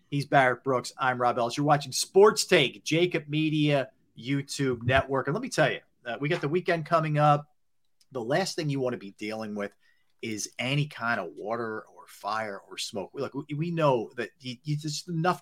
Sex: male